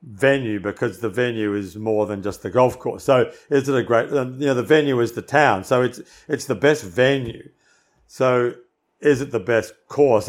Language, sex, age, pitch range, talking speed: English, male, 50-69, 110-140 Hz, 205 wpm